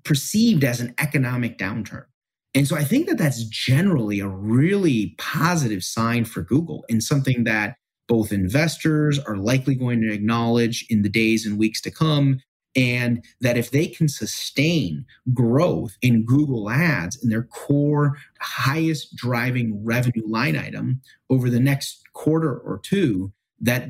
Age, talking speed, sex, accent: 30-49, 150 wpm, male, American